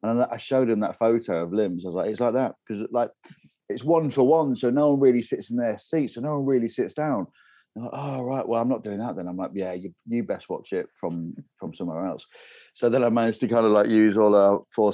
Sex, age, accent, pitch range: male, 30-49, British, 90-130 Hz